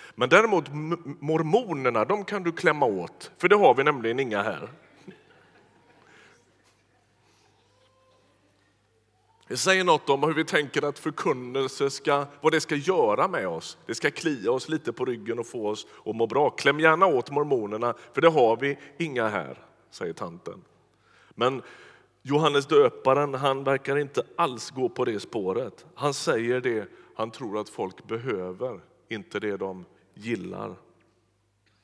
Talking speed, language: 150 wpm, Swedish